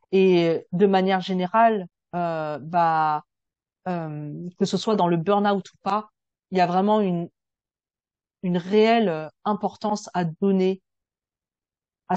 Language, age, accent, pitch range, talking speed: French, 40-59, French, 175-210 Hz, 130 wpm